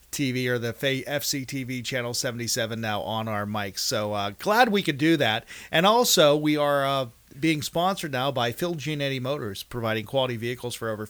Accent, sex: American, male